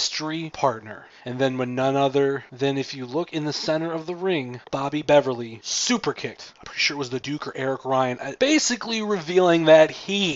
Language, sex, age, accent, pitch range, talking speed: English, male, 30-49, American, 130-160 Hz, 205 wpm